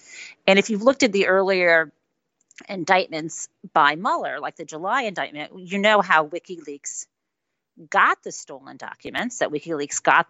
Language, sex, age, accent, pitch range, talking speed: English, female, 40-59, American, 150-195 Hz, 145 wpm